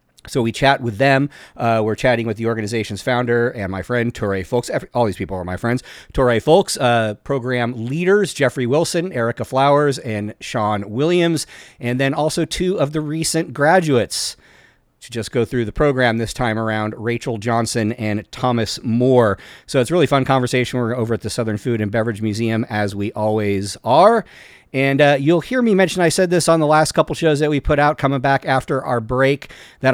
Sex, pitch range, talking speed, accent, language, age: male, 110-135 Hz, 200 wpm, American, English, 40-59